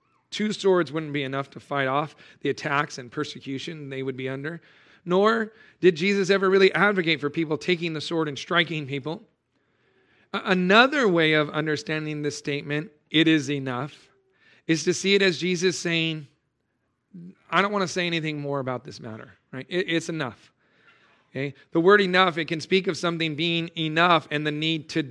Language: English